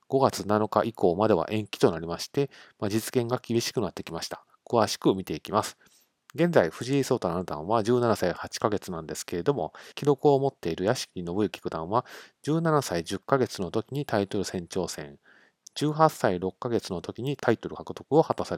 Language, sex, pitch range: Japanese, male, 95-135 Hz